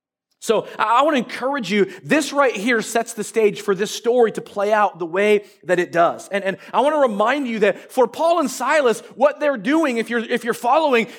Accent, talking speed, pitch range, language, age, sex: American, 230 wpm, 225-295 Hz, English, 30-49, male